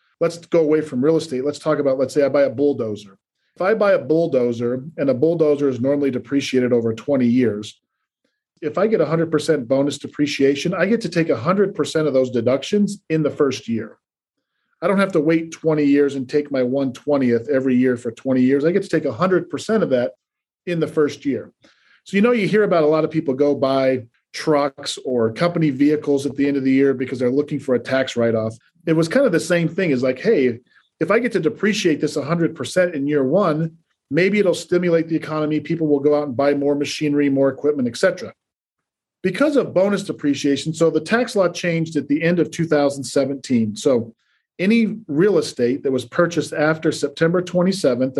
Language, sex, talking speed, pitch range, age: English, male, 205 wpm, 135-165 Hz, 40-59